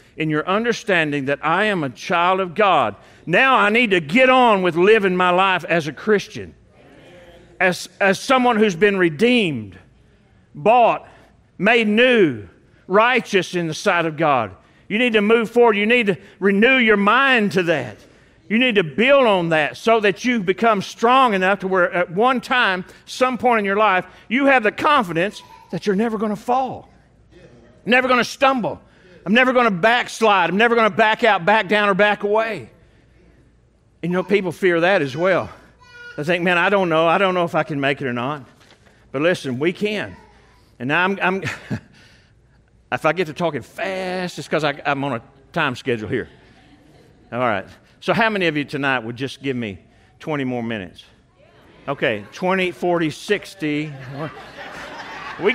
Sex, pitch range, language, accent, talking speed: male, 155-220 Hz, English, American, 180 wpm